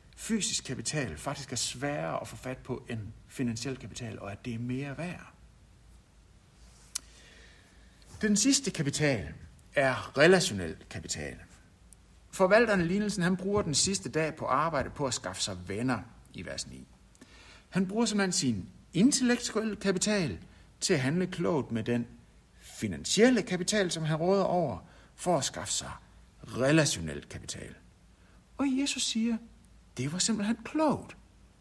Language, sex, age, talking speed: Danish, male, 60-79, 135 wpm